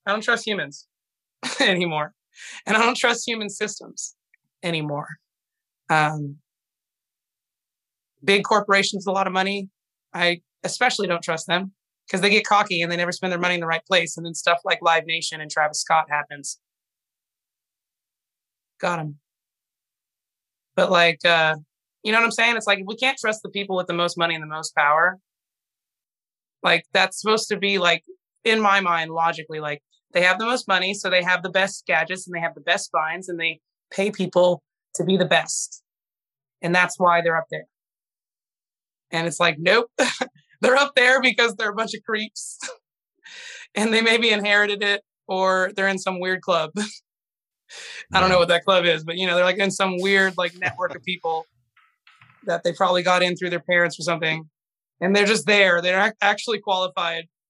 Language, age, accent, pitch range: English, 20-39, American, 165-200 Hz